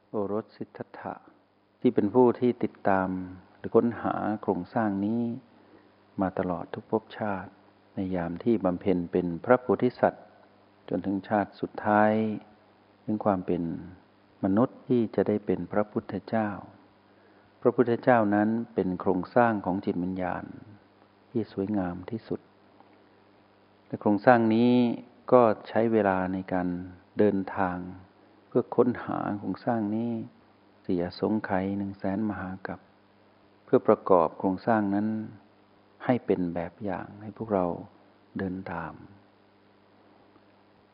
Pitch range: 95-110 Hz